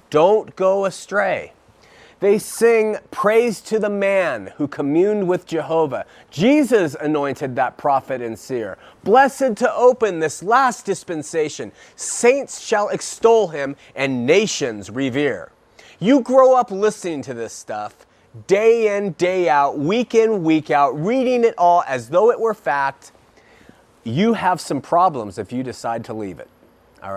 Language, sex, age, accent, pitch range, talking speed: English, male, 30-49, American, 150-225 Hz, 145 wpm